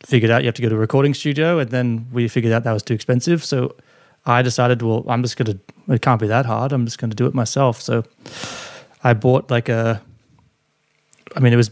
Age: 20-39